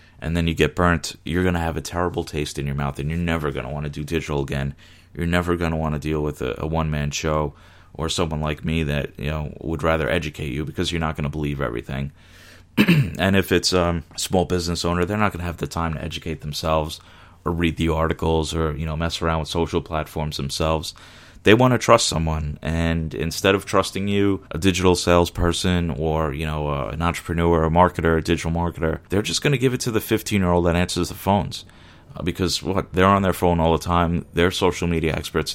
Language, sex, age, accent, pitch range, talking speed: English, male, 30-49, American, 75-90 Hz, 230 wpm